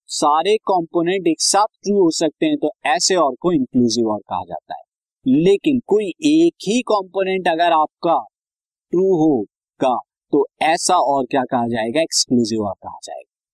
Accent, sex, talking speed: native, male, 165 wpm